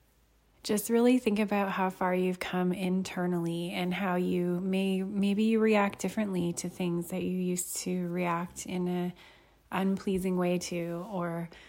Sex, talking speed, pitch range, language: female, 155 wpm, 180-195 Hz, English